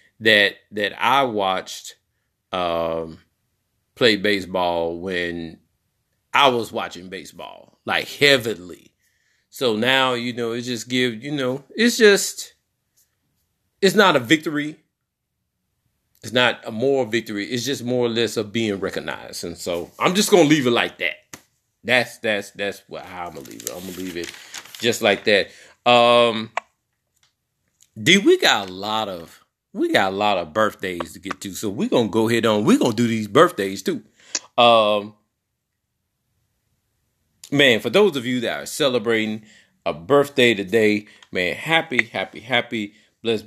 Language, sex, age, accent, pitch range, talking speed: English, male, 30-49, American, 100-125 Hz, 155 wpm